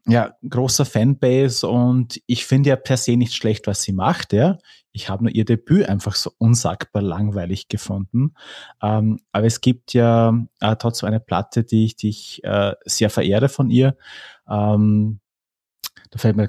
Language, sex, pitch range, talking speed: German, male, 105-120 Hz, 170 wpm